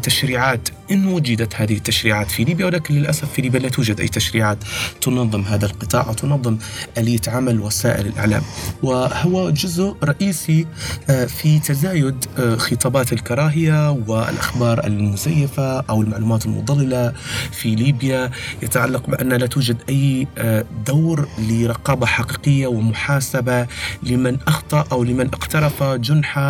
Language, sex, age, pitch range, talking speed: Arabic, male, 30-49, 115-135 Hz, 120 wpm